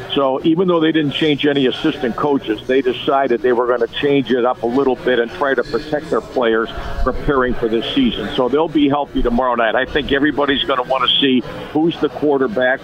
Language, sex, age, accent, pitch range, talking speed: English, male, 50-69, American, 125-150 Hz, 225 wpm